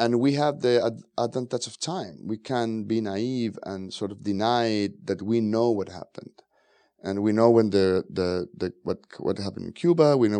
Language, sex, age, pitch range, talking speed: English, male, 30-49, 100-120 Hz, 195 wpm